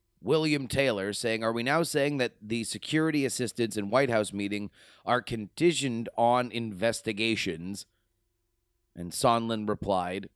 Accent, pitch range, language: American, 100-125 Hz, English